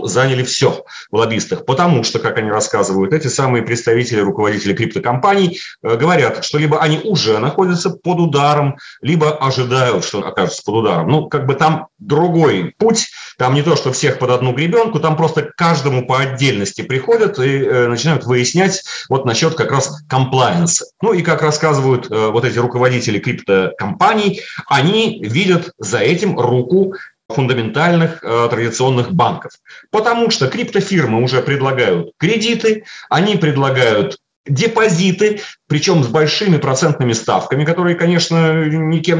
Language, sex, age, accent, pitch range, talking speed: Russian, male, 40-59, native, 125-170 Hz, 135 wpm